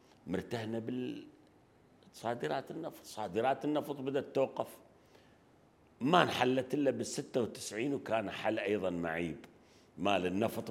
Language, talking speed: Arabic, 95 wpm